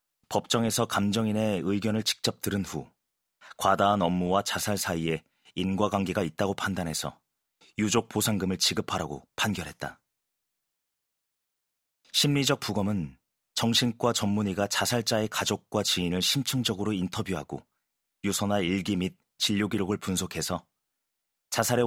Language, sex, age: Korean, male, 30-49